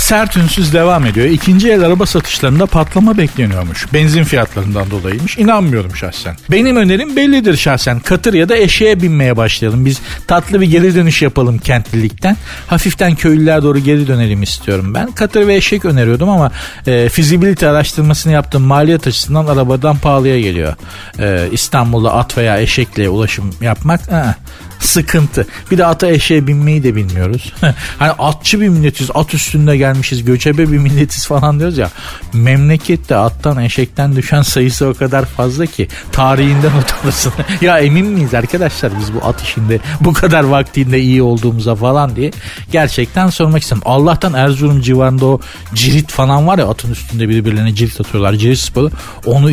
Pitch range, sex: 115-160 Hz, male